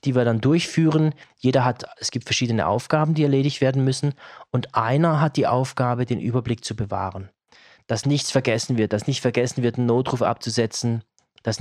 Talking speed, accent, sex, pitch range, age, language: 180 wpm, German, male, 115-140 Hz, 20-39, German